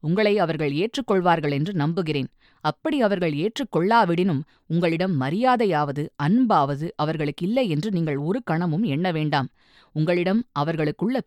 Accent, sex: native, female